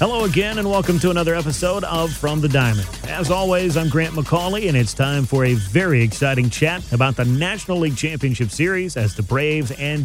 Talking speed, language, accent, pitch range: 205 wpm, English, American, 125-165 Hz